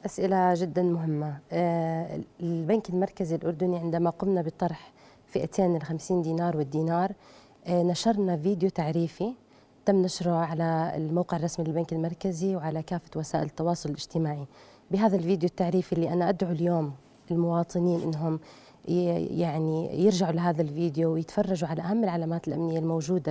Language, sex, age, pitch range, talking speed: Arabic, female, 30-49, 165-200 Hz, 120 wpm